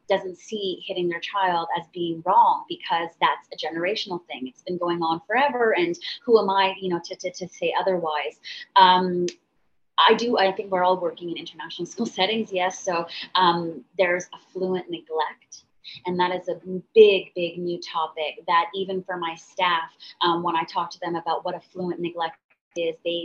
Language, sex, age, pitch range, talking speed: English, female, 20-39, 170-190 Hz, 185 wpm